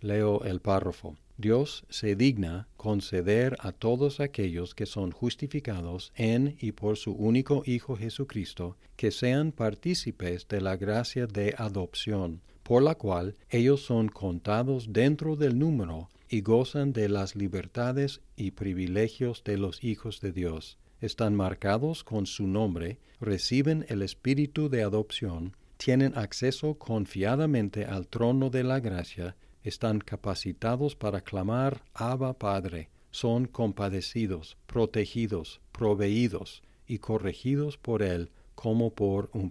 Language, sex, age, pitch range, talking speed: Spanish, male, 50-69, 95-120 Hz, 130 wpm